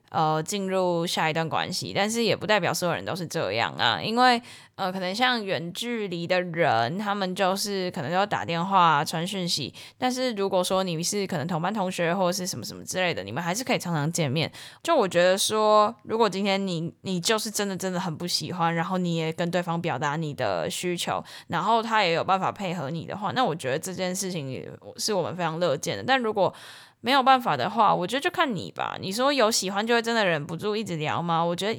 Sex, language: female, Chinese